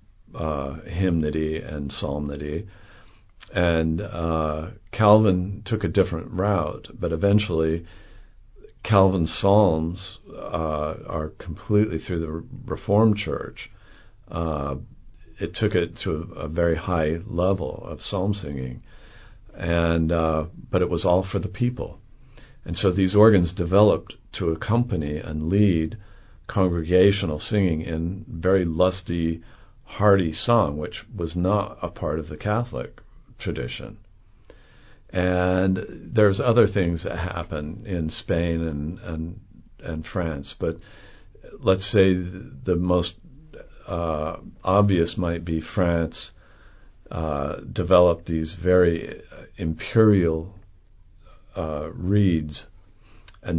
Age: 50-69